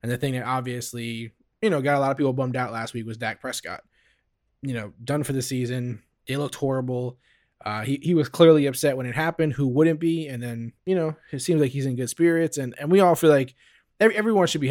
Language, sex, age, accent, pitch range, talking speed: English, male, 20-39, American, 120-145 Hz, 250 wpm